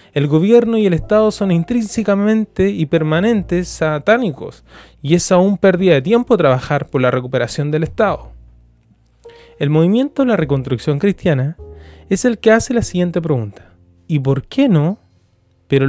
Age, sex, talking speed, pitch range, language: 20-39, male, 150 wpm, 135-195 Hz, Spanish